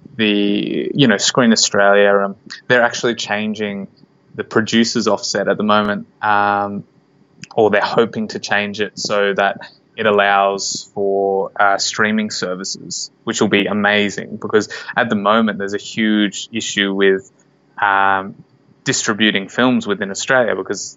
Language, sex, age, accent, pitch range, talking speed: English, male, 20-39, Australian, 100-110 Hz, 140 wpm